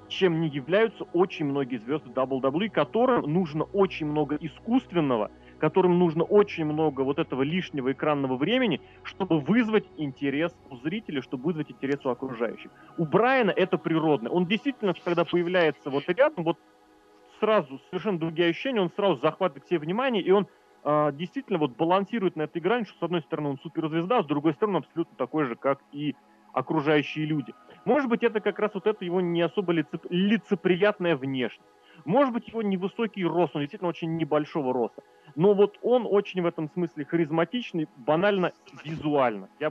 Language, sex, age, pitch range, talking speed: Russian, male, 30-49, 140-195 Hz, 170 wpm